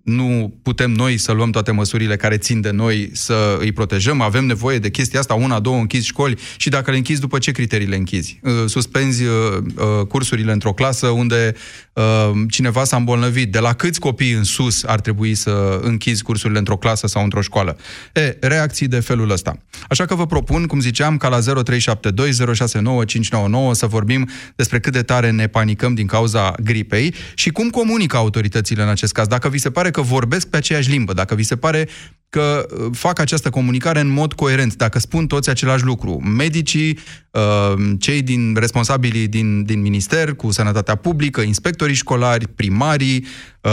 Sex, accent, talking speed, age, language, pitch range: male, native, 175 wpm, 30-49, Romanian, 110-135 Hz